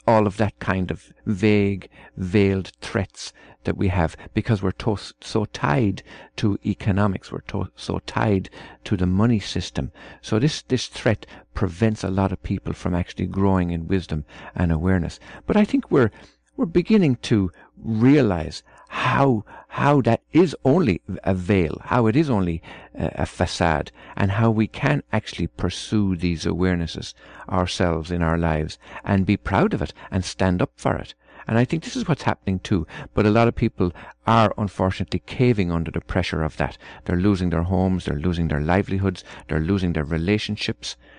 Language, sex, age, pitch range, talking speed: English, male, 50-69, 85-110 Hz, 170 wpm